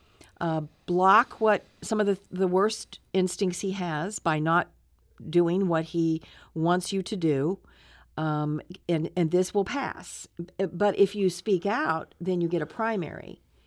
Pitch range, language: 160-195 Hz, English